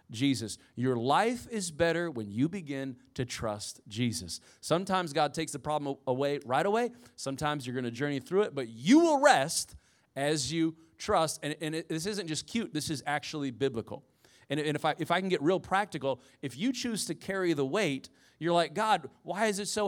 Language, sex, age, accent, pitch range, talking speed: English, male, 30-49, American, 130-175 Hz, 200 wpm